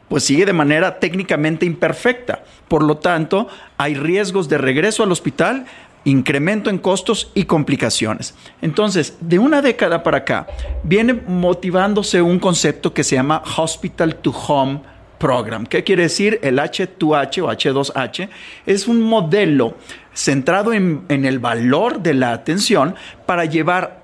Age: 40-59